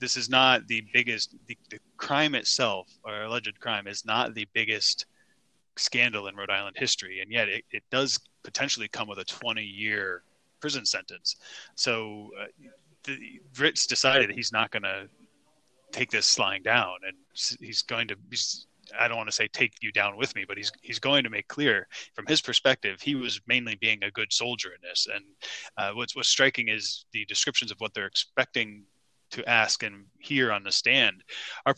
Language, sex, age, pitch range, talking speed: English, male, 20-39, 105-130 Hz, 195 wpm